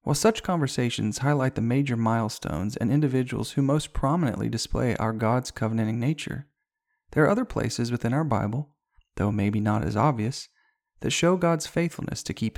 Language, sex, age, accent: English, male, 40-59, American